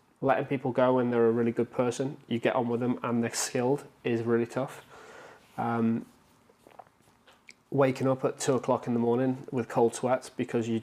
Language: English